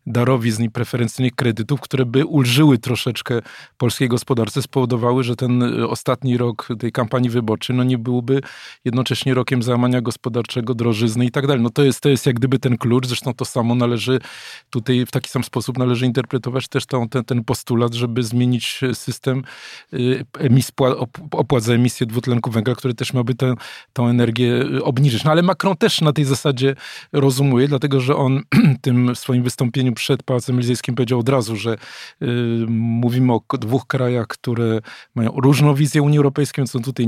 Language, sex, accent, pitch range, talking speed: Polish, male, native, 120-135 Hz, 165 wpm